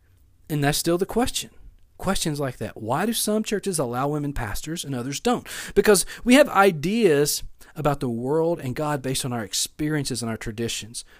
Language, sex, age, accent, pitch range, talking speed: English, male, 40-59, American, 135-200 Hz, 180 wpm